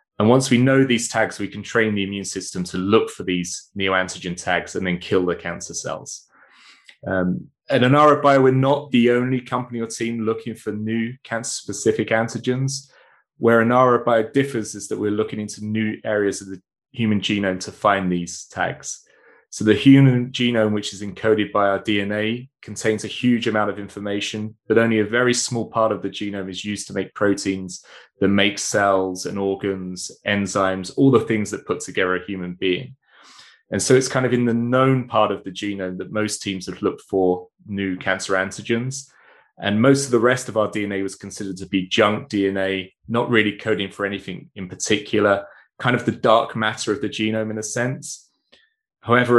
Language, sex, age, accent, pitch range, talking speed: English, male, 20-39, British, 95-120 Hz, 195 wpm